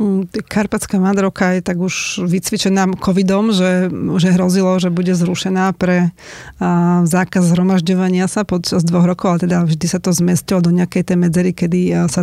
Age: 30-49